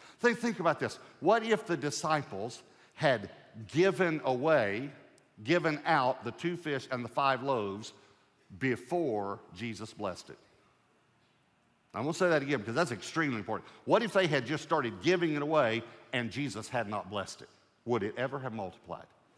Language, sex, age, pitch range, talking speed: English, male, 50-69, 105-135 Hz, 165 wpm